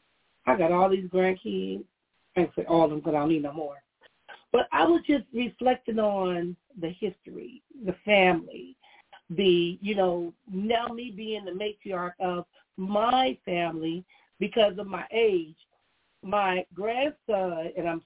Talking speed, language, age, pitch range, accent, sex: 145 wpm, English, 40-59, 175-230 Hz, American, female